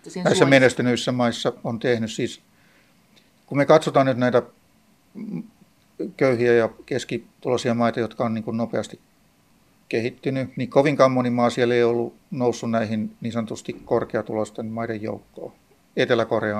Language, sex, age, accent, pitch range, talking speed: Finnish, male, 60-79, native, 110-125 Hz, 125 wpm